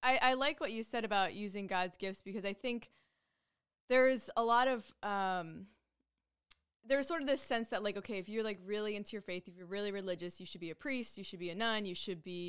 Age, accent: 20-39, American